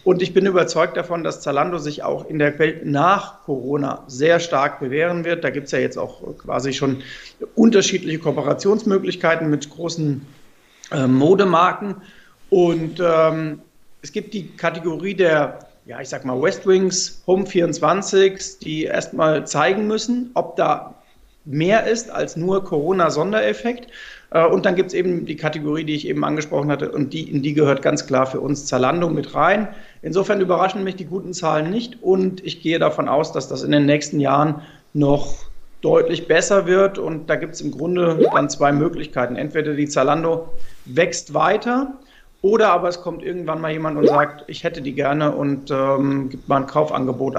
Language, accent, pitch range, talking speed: German, German, 145-185 Hz, 170 wpm